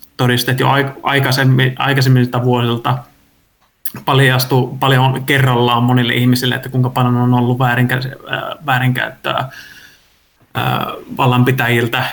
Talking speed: 85 wpm